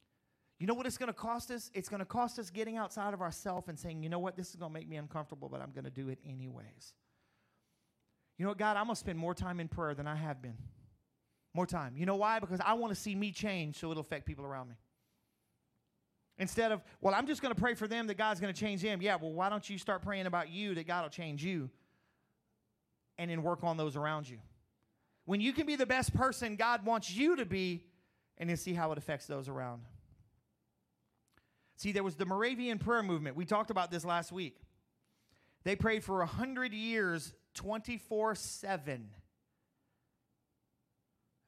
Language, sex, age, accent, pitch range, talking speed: English, male, 30-49, American, 135-205 Hz, 215 wpm